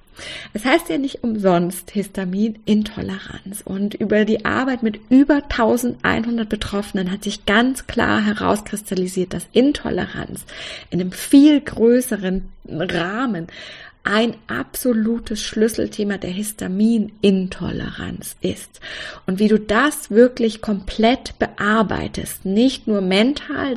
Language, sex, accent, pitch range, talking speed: German, female, German, 195-235 Hz, 105 wpm